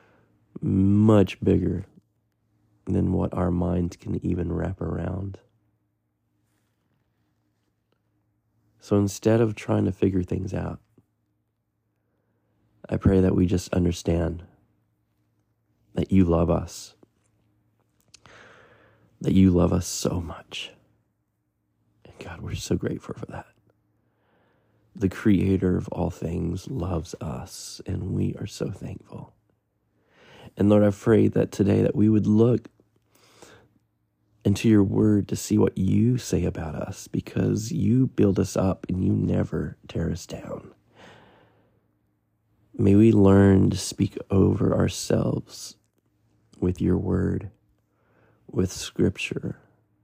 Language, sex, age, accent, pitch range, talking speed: English, male, 30-49, American, 95-110 Hz, 115 wpm